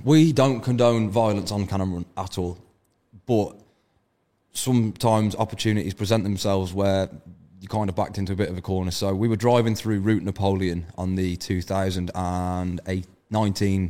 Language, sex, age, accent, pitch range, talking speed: English, male, 20-39, British, 90-105 Hz, 150 wpm